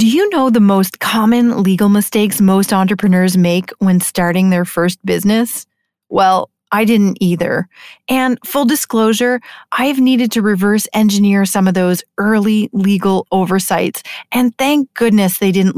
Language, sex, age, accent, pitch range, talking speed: English, female, 30-49, American, 195-250 Hz, 150 wpm